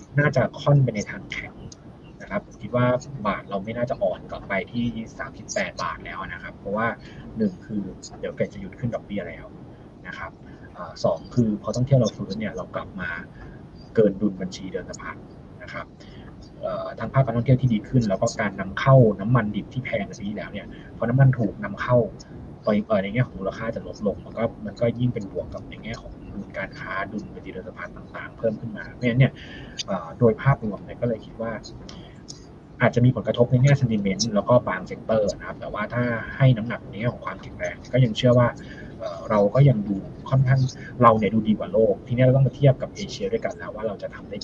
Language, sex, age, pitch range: Thai, male, 20-39, 105-125 Hz